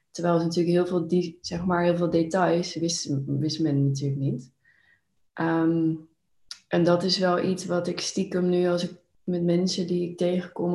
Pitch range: 160-180 Hz